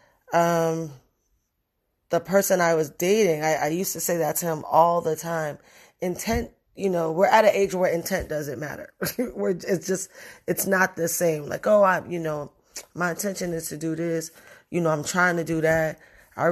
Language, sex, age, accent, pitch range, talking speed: English, female, 20-39, American, 160-195 Hz, 195 wpm